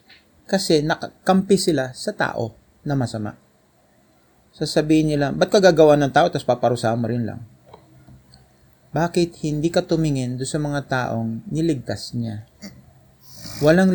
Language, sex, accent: Filipino, male, native